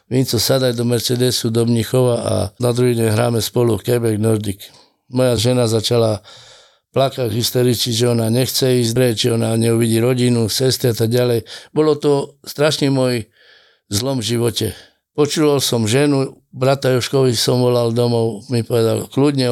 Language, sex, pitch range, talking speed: Slovak, male, 120-135 Hz, 155 wpm